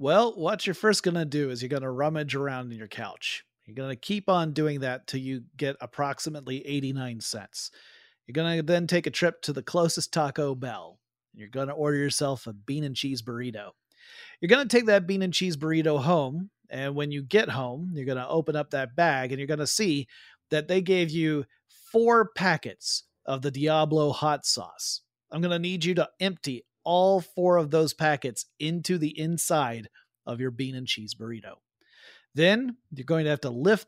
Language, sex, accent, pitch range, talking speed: English, male, American, 135-170 Hz, 205 wpm